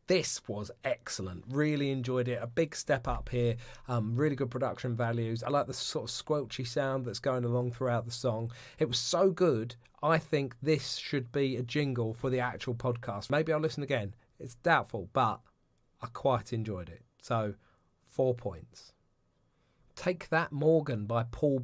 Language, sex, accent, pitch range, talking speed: English, male, British, 115-140 Hz, 175 wpm